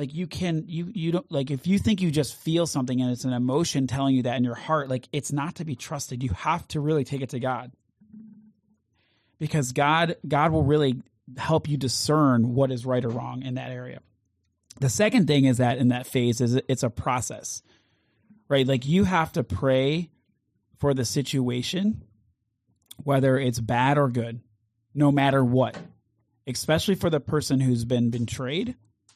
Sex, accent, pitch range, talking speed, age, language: male, American, 120-145 Hz, 185 wpm, 30-49, English